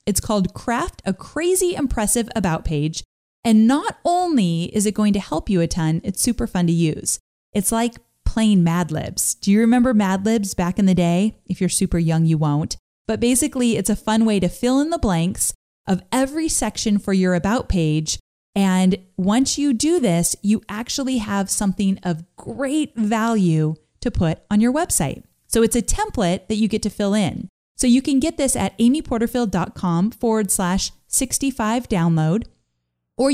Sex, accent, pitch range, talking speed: female, American, 175-235 Hz, 180 wpm